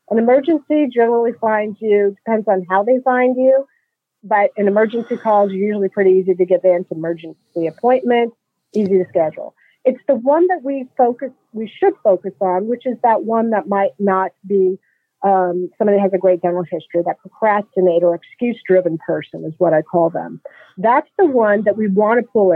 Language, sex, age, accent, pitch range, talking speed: English, female, 40-59, American, 190-245 Hz, 190 wpm